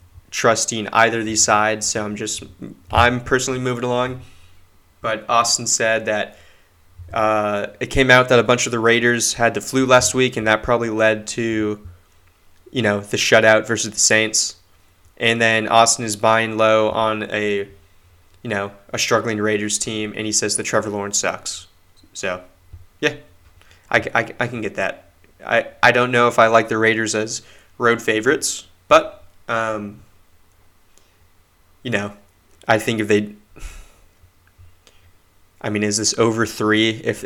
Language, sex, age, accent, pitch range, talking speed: English, male, 20-39, American, 90-115 Hz, 160 wpm